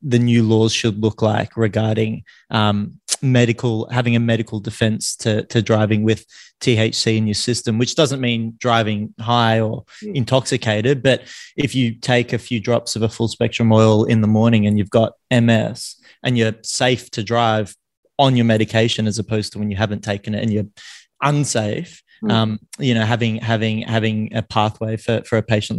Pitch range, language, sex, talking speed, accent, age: 110-125 Hz, English, male, 180 wpm, Australian, 20-39